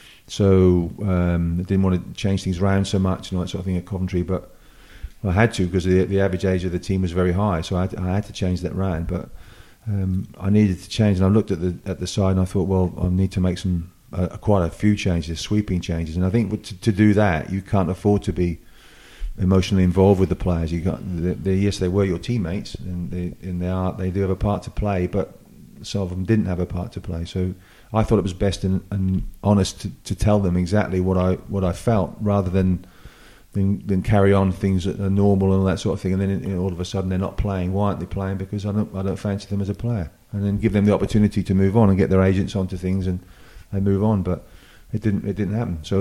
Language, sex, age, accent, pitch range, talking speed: English, male, 40-59, British, 90-100 Hz, 270 wpm